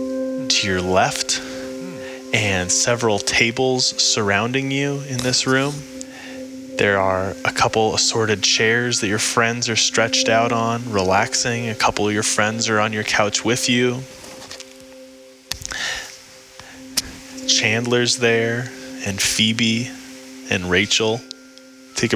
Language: English